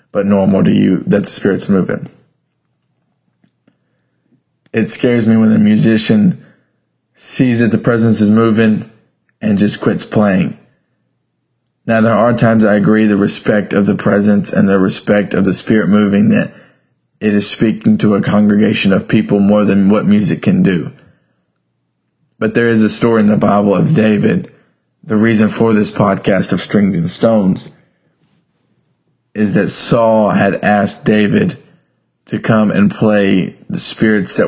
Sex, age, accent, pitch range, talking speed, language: male, 20-39, American, 100-115 Hz, 155 wpm, English